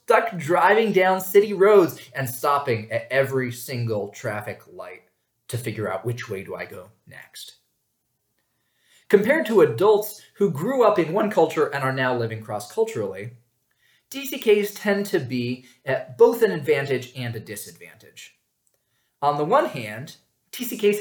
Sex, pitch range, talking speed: male, 120-195 Hz, 145 wpm